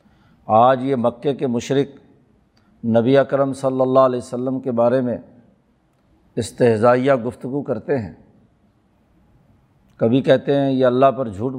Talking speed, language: 130 wpm, Urdu